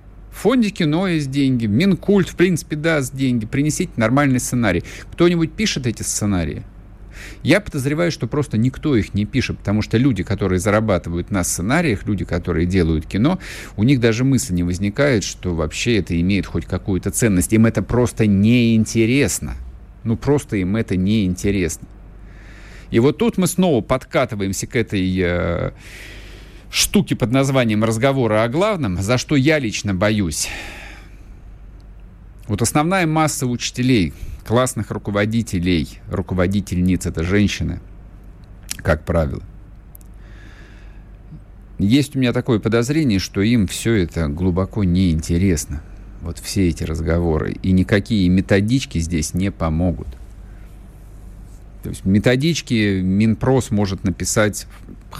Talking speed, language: 125 wpm, Russian